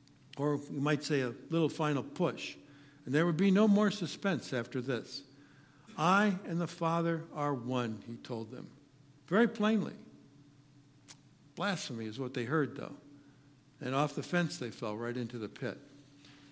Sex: male